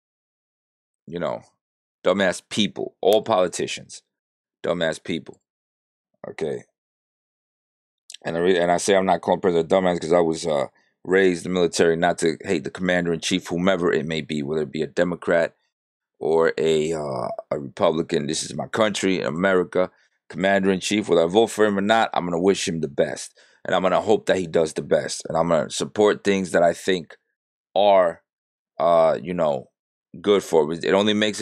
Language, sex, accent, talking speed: English, male, American, 185 wpm